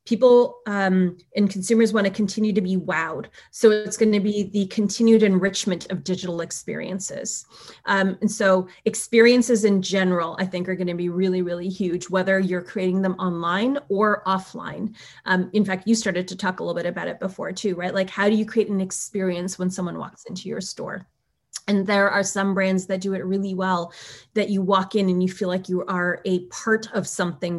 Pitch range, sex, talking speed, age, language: 180-205 Hz, female, 205 wpm, 30-49, English